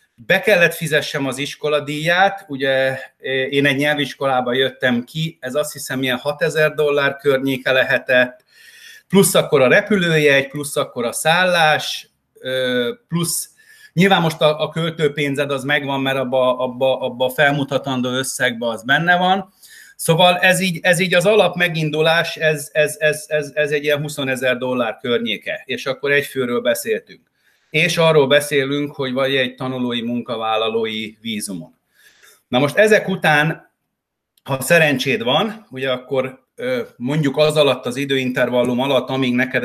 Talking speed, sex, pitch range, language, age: 140 wpm, male, 130-175 Hz, Hungarian, 30-49